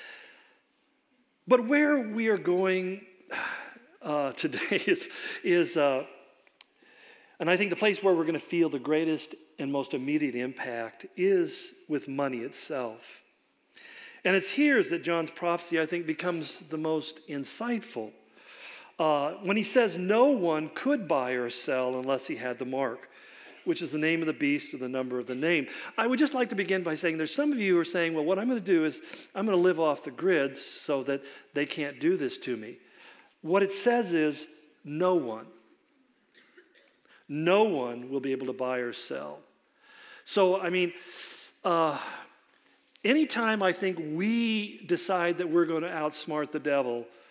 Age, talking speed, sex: 50-69, 175 wpm, male